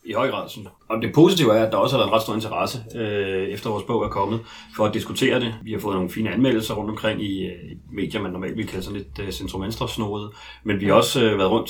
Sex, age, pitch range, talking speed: male, 30-49, 100-120 Hz, 265 wpm